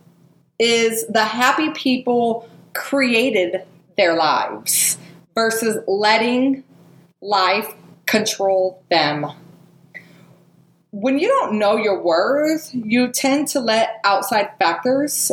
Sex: female